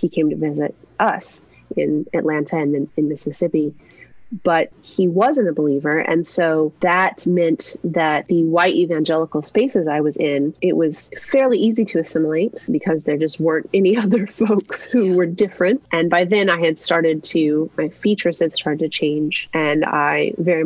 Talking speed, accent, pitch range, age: 170 wpm, American, 160-200 Hz, 30-49